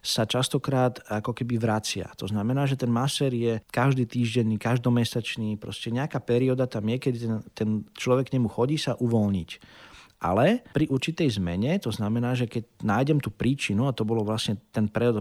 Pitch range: 110-130 Hz